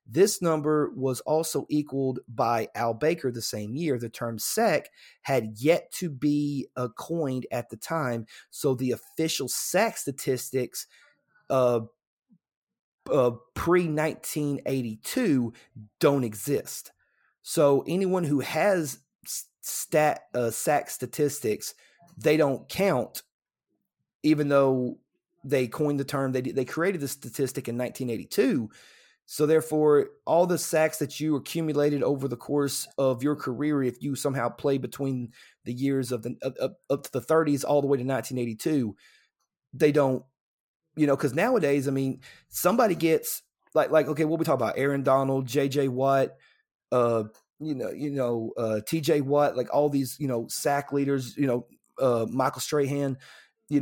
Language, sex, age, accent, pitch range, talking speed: English, male, 30-49, American, 125-150 Hz, 145 wpm